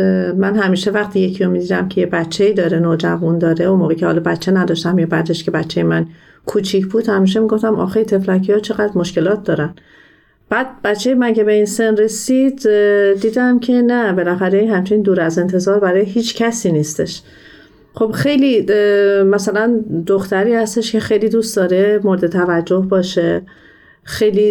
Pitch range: 180-210 Hz